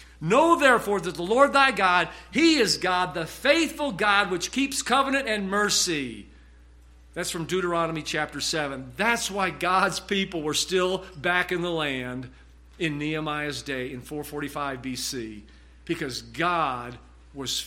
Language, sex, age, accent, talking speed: English, male, 50-69, American, 145 wpm